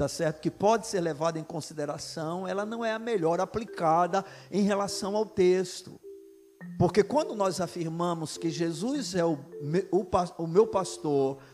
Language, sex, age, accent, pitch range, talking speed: Portuguese, male, 50-69, Brazilian, 180-270 Hz, 160 wpm